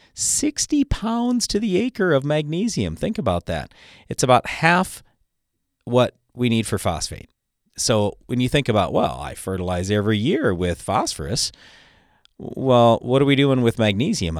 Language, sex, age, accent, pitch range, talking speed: English, male, 40-59, American, 90-135 Hz, 155 wpm